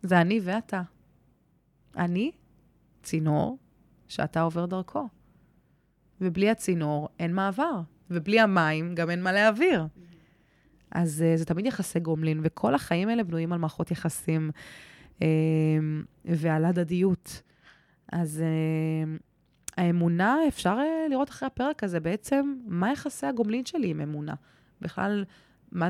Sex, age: female, 20-39